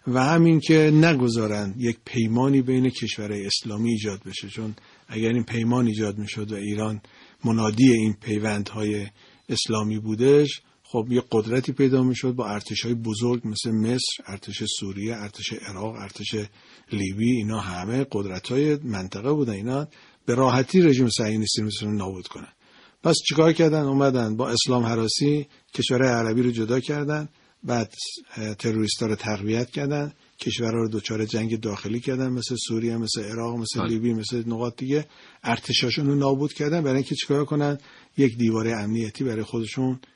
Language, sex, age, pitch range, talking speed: Persian, male, 50-69, 110-135 Hz, 145 wpm